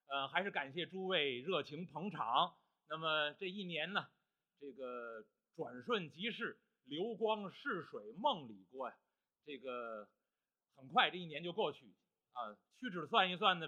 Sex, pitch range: male, 140-190 Hz